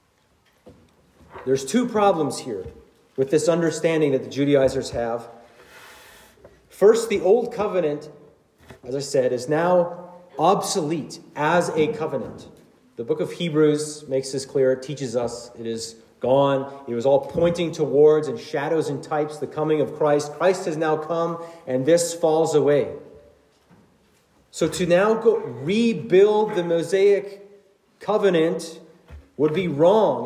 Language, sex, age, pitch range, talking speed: English, male, 40-59, 150-210 Hz, 135 wpm